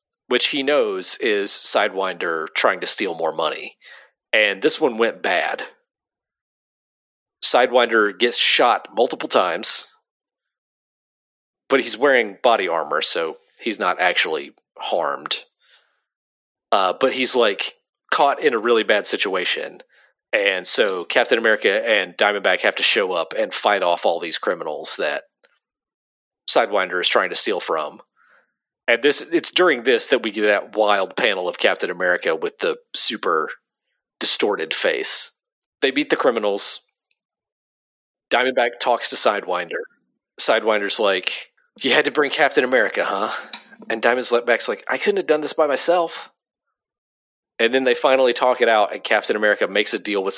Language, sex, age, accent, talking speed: English, male, 40-59, American, 150 wpm